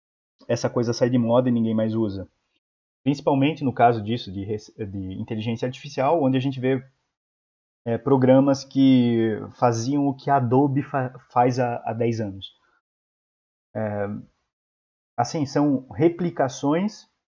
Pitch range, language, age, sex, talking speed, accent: 105-135 Hz, Portuguese, 20-39, male, 135 wpm, Brazilian